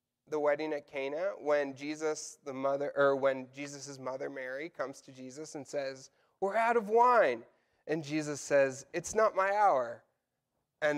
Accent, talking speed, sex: American, 165 wpm, male